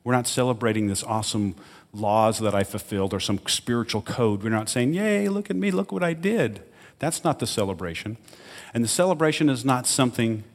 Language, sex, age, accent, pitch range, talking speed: English, male, 40-59, American, 100-125 Hz, 195 wpm